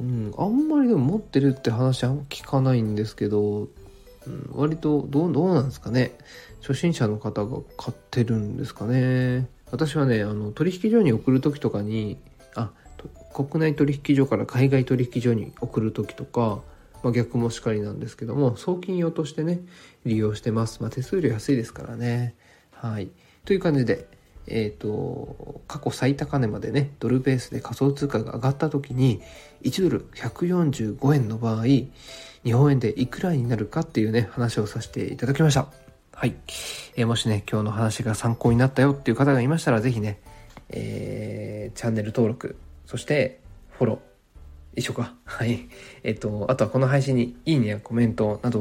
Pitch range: 110-140 Hz